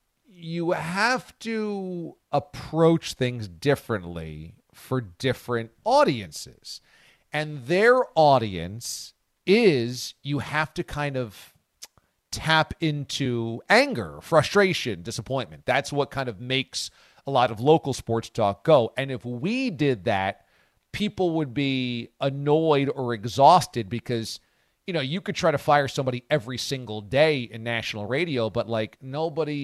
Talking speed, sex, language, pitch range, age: 130 wpm, male, English, 115-150 Hz, 40-59